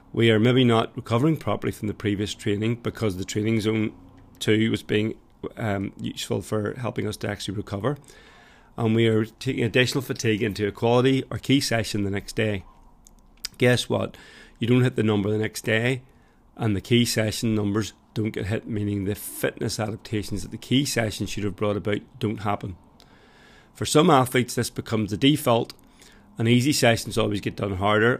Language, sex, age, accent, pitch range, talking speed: English, male, 40-59, British, 105-120 Hz, 185 wpm